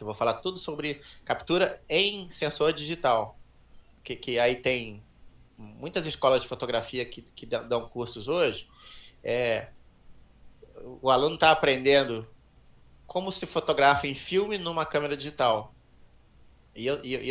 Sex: male